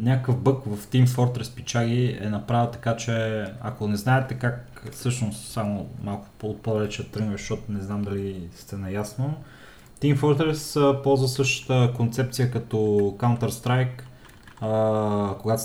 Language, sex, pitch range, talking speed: Bulgarian, male, 110-135 Hz, 125 wpm